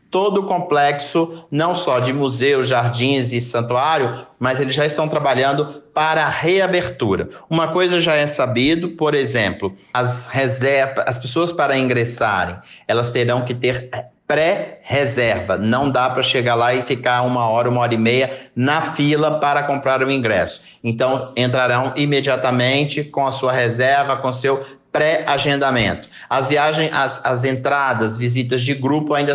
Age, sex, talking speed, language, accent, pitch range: 50-69, male, 155 wpm, Portuguese, Brazilian, 125-155 Hz